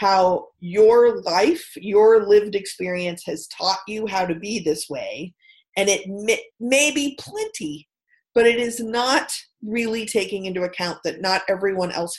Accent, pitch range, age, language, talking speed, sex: American, 165-225 Hz, 30-49, English, 160 wpm, female